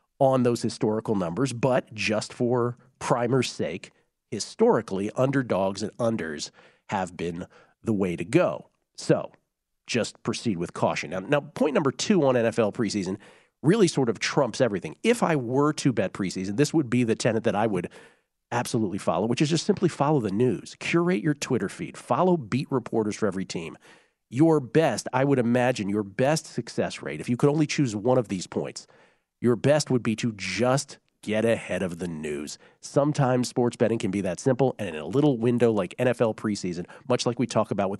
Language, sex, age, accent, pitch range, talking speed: English, male, 40-59, American, 110-140 Hz, 190 wpm